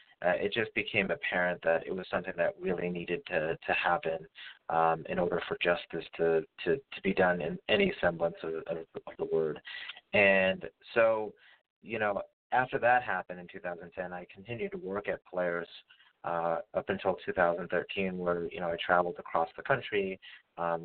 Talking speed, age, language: 175 wpm, 30-49, English